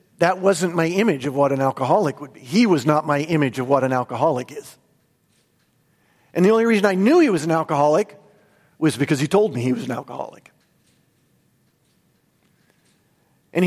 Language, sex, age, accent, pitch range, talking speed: English, male, 50-69, American, 160-230 Hz, 175 wpm